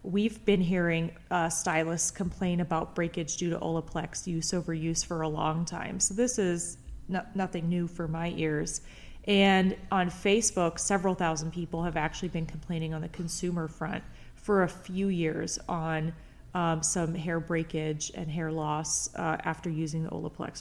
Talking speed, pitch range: 165 wpm, 160-185 Hz